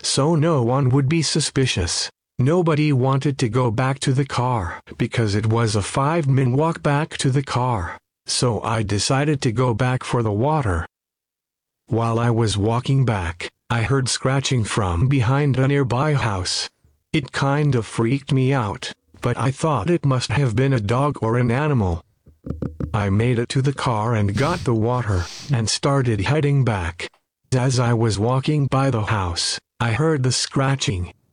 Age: 50-69